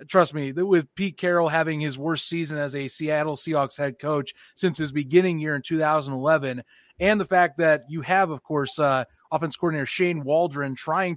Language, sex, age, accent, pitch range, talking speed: English, male, 30-49, American, 145-185 Hz, 190 wpm